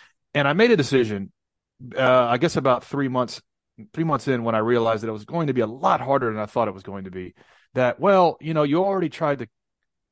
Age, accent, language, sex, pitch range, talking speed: 30-49, American, English, male, 115-150 Hz, 250 wpm